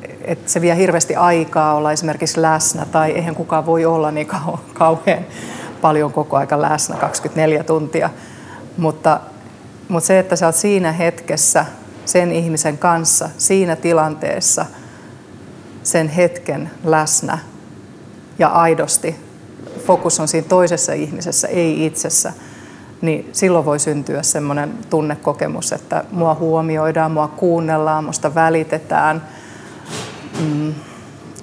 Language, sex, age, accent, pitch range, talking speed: Finnish, female, 30-49, native, 155-170 Hz, 115 wpm